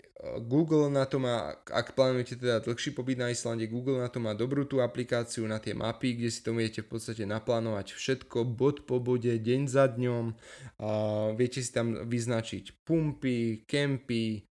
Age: 20-39